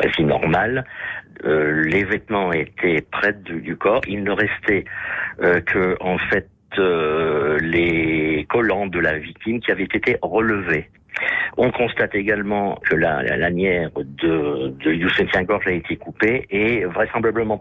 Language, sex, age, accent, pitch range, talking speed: French, male, 50-69, French, 90-110 Hz, 145 wpm